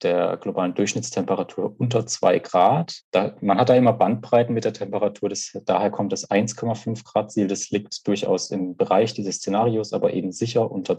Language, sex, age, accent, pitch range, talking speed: German, male, 30-49, German, 100-120 Hz, 170 wpm